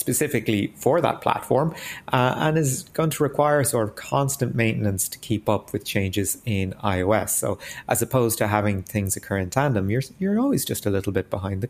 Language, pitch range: English, 100-130 Hz